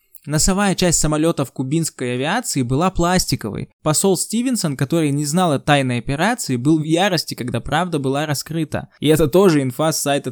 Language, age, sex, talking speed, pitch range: Russian, 20-39, male, 165 wpm, 130-175 Hz